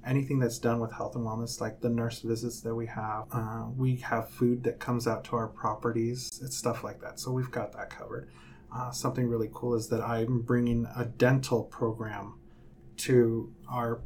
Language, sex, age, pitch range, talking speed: English, male, 30-49, 115-125 Hz, 195 wpm